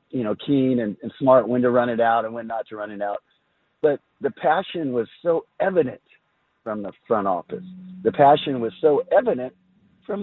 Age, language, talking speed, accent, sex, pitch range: 50-69, English, 200 wpm, American, male, 115-175 Hz